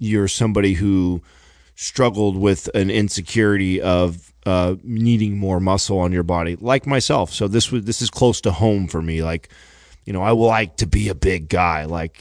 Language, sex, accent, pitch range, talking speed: English, male, American, 90-105 Hz, 185 wpm